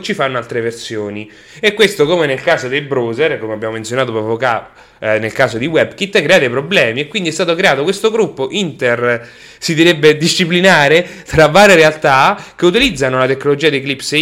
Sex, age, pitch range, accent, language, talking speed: male, 20-39, 120-165 Hz, Italian, English, 185 wpm